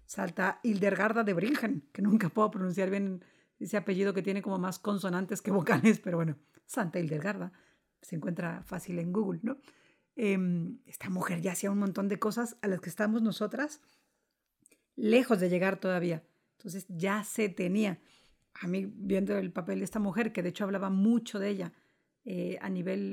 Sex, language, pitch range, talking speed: female, Spanish, 190-225 Hz, 175 wpm